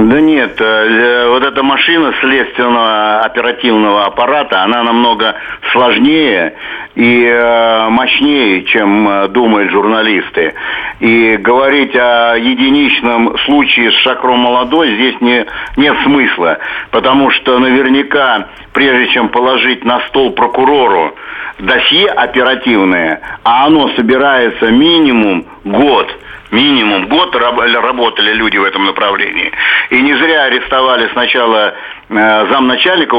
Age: 50-69